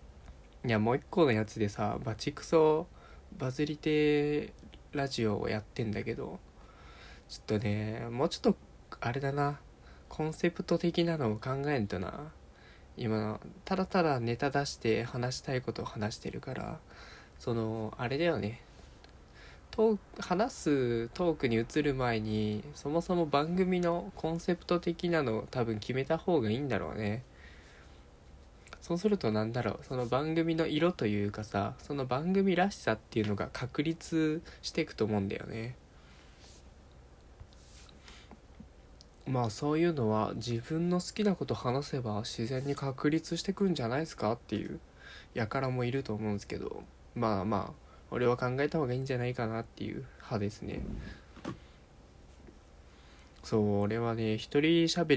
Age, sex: 20-39, male